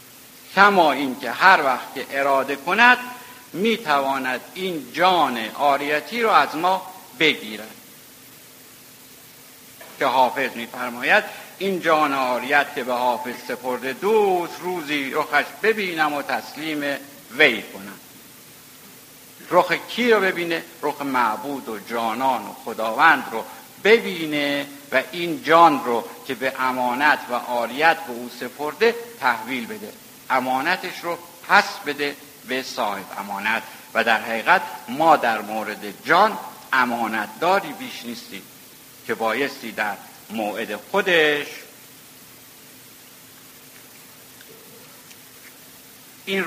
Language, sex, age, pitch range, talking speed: Persian, male, 60-79, 130-185 Hz, 110 wpm